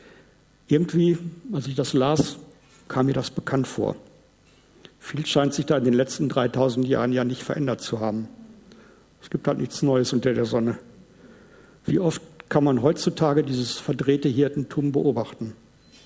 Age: 60-79